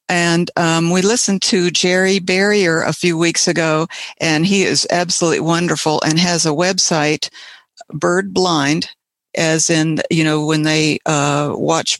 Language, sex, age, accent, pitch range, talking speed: English, female, 60-79, American, 155-180 Hz, 150 wpm